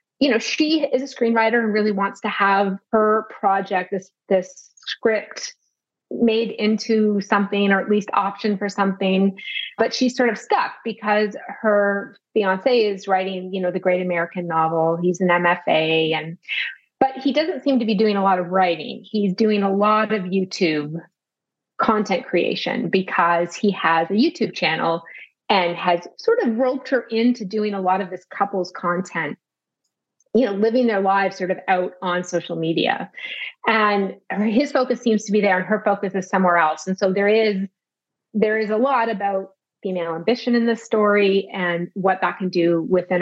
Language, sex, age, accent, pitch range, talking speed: English, female, 30-49, American, 185-225 Hz, 180 wpm